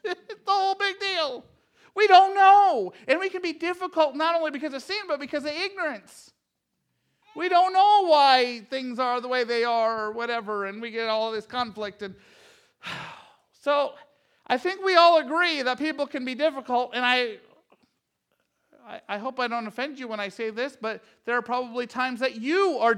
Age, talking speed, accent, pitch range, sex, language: 40-59, 190 wpm, American, 225-315 Hz, male, English